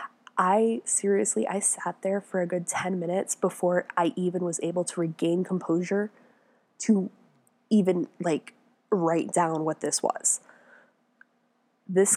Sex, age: female, 20-39